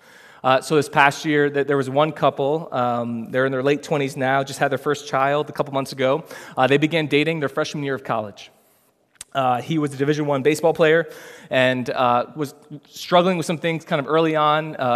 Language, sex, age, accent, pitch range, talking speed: English, male, 20-39, American, 125-155 Hz, 215 wpm